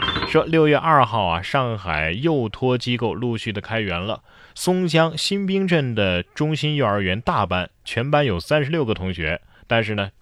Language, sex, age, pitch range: Chinese, male, 20-39, 90-135 Hz